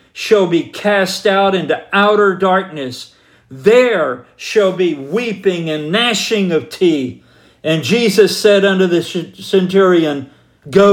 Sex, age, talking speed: male, 50-69, 120 wpm